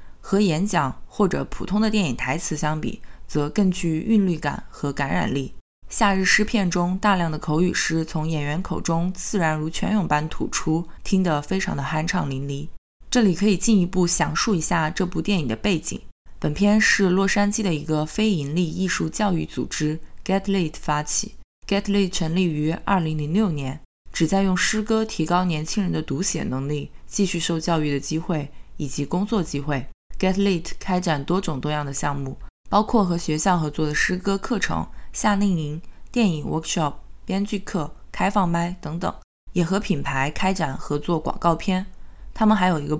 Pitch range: 155-190 Hz